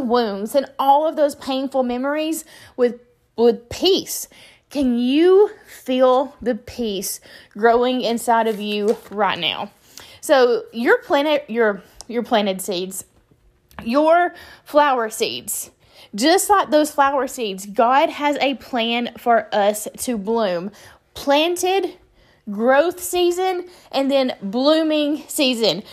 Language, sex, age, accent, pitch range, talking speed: English, female, 20-39, American, 230-300 Hz, 120 wpm